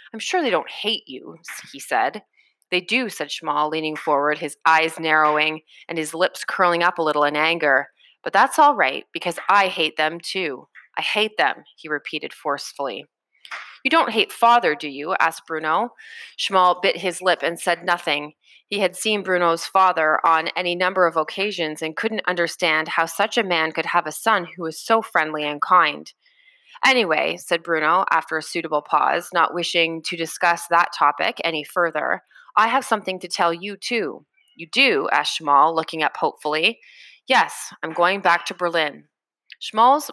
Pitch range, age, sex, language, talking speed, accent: 160-205 Hz, 30-49, female, English, 180 wpm, American